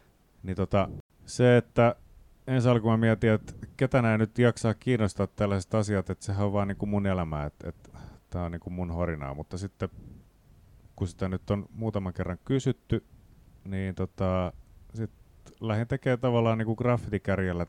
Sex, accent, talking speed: male, native, 165 wpm